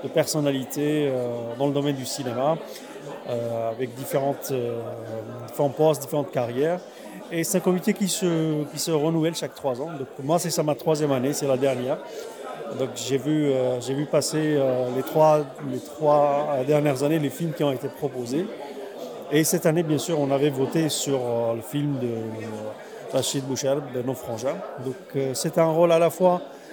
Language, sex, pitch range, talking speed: Arabic, male, 135-170 Hz, 190 wpm